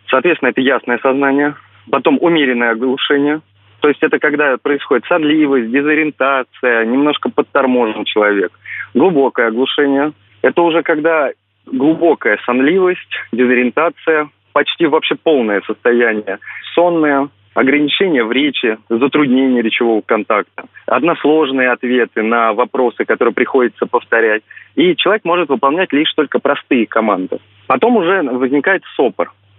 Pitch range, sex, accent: 125-165 Hz, male, native